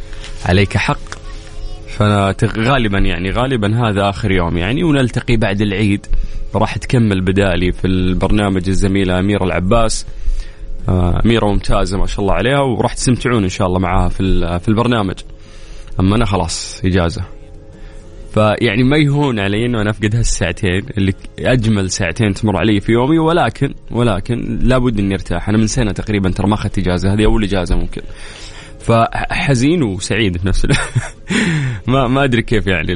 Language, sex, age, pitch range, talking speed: Arabic, male, 20-39, 95-120 Hz, 145 wpm